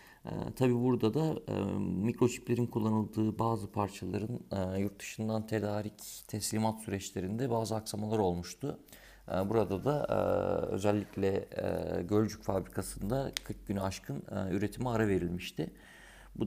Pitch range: 90-110 Hz